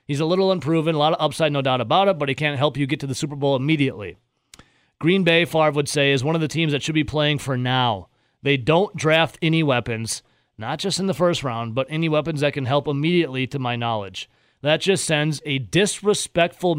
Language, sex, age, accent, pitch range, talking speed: English, male, 30-49, American, 135-175 Hz, 230 wpm